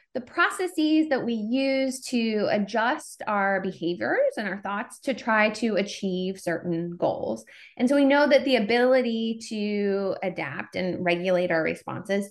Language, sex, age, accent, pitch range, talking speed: English, female, 20-39, American, 180-260 Hz, 150 wpm